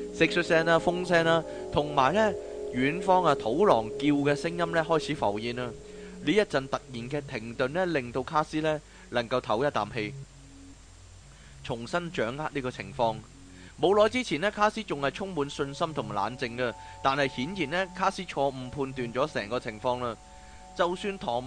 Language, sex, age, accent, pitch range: Chinese, male, 20-39, native, 125-170 Hz